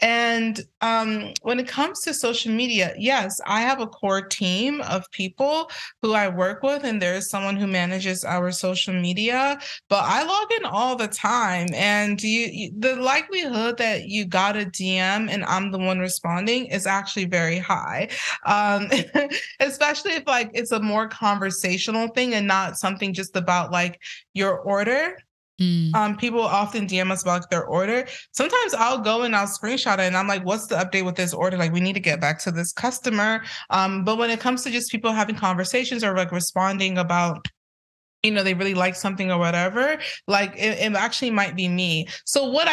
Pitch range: 185-235 Hz